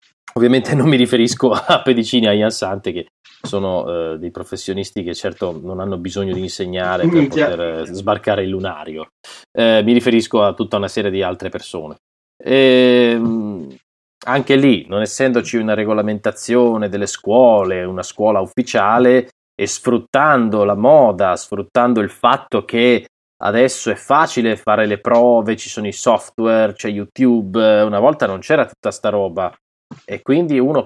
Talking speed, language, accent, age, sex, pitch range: 155 wpm, Italian, native, 20-39, male, 95-120 Hz